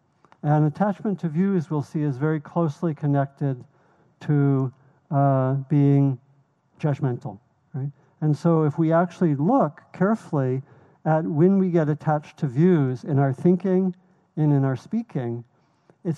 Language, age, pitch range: English, 60-79, 140-170 Hz